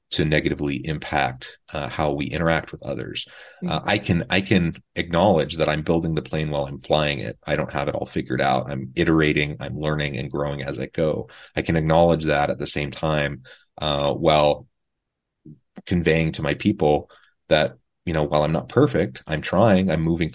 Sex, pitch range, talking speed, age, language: male, 75-85 Hz, 190 wpm, 30-49, English